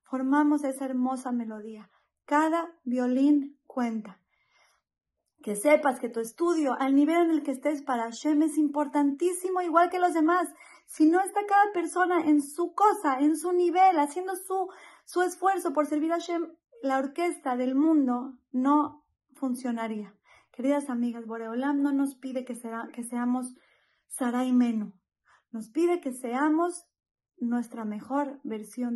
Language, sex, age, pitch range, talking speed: Spanish, female, 30-49, 245-310 Hz, 140 wpm